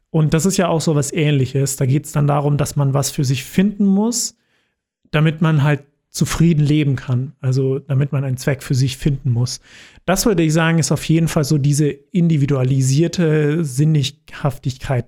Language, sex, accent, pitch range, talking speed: German, male, German, 140-180 Hz, 185 wpm